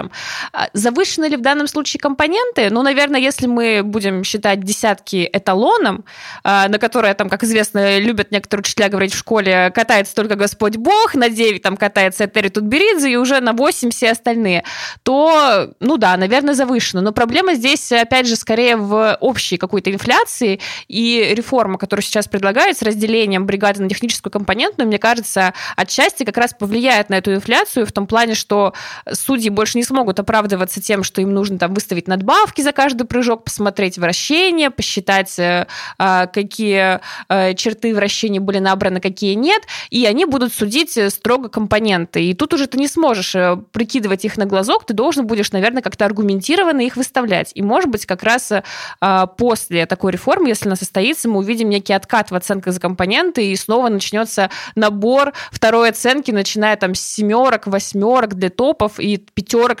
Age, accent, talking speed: 20-39, native, 160 wpm